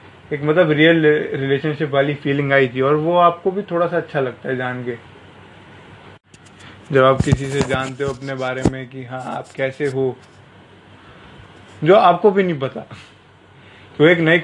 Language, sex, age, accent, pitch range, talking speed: English, male, 20-39, Indian, 125-155 Hz, 170 wpm